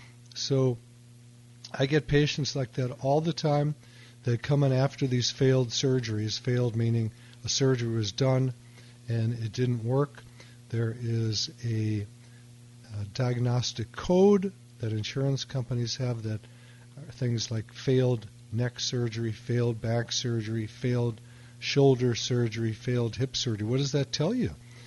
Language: English